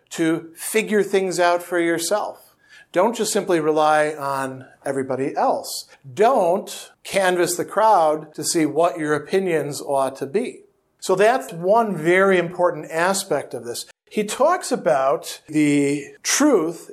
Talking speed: 135 wpm